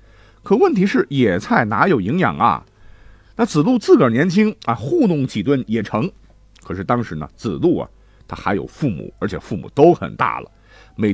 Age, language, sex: 50-69, Chinese, male